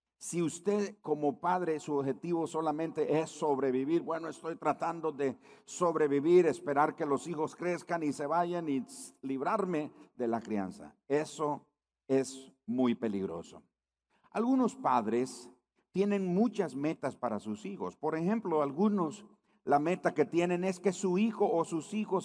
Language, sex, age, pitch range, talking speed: Spanish, male, 50-69, 140-190 Hz, 145 wpm